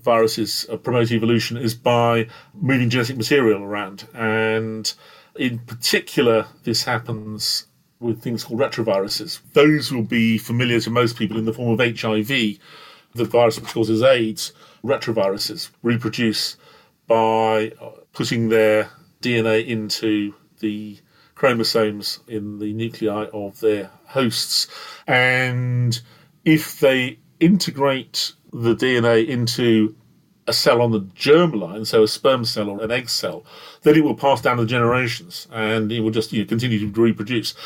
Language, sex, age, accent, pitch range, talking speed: English, male, 40-59, British, 110-125 Hz, 135 wpm